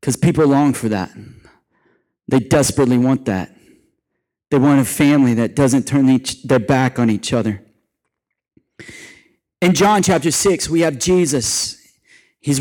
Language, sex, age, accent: English, male, 30-49, American